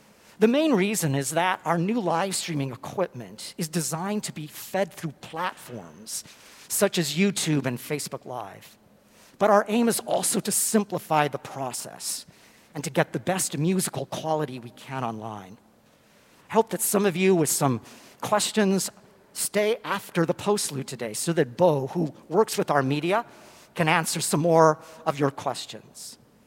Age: 50-69